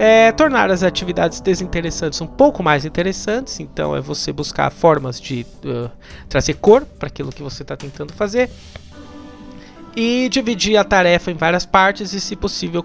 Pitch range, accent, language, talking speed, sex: 155-205 Hz, Brazilian, Portuguese, 155 wpm, male